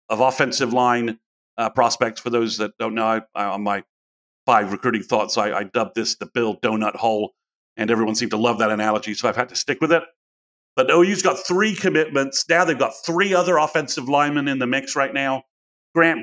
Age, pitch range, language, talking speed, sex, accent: 50-69, 115-145 Hz, English, 210 wpm, male, American